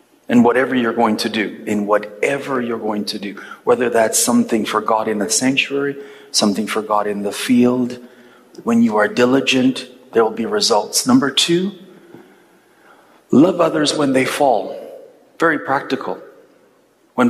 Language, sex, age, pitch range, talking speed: English, male, 40-59, 115-165 Hz, 155 wpm